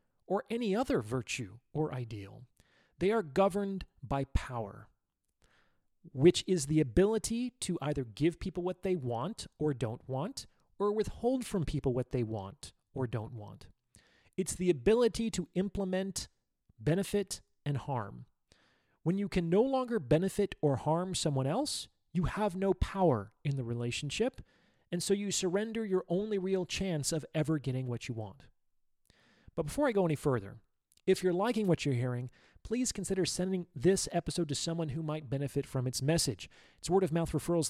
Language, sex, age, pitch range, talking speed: English, male, 30-49, 135-185 Hz, 165 wpm